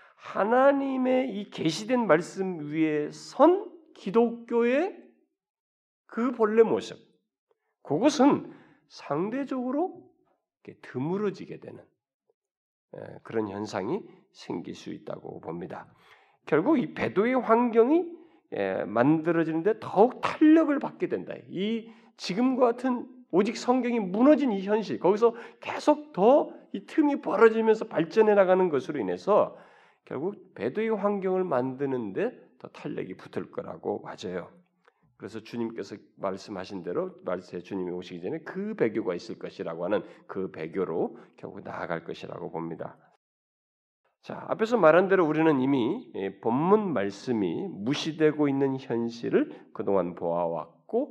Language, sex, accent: Korean, male, native